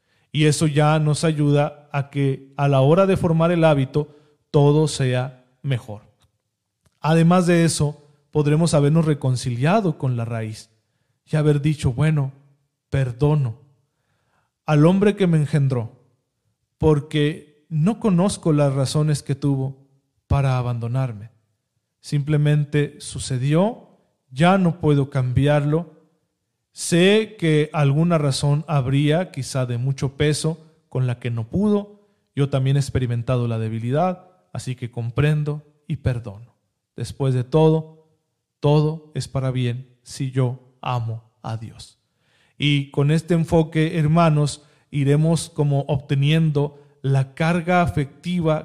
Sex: male